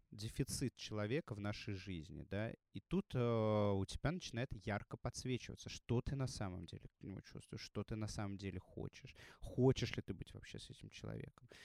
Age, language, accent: 20-39, Russian, native